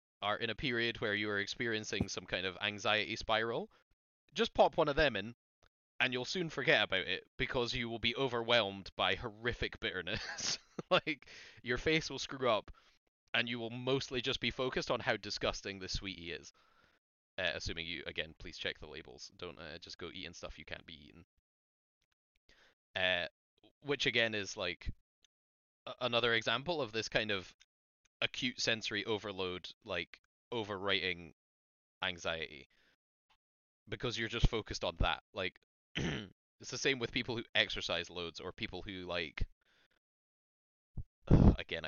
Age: 20-39